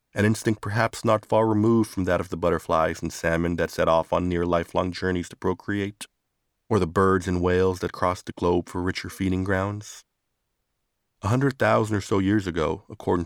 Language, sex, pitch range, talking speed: English, male, 90-105 Hz, 195 wpm